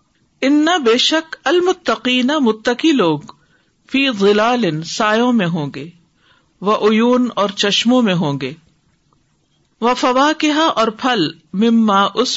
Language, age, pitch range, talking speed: English, 50-69, 185-245 Hz, 115 wpm